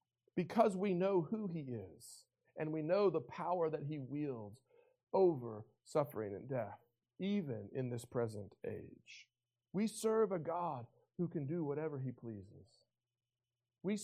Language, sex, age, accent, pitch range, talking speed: English, male, 50-69, American, 125-180 Hz, 145 wpm